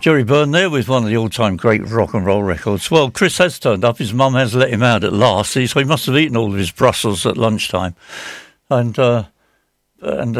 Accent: British